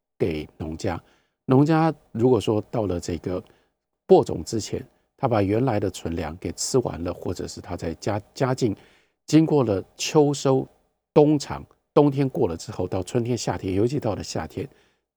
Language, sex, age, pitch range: Chinese, male, 50-69, 90-135 Hz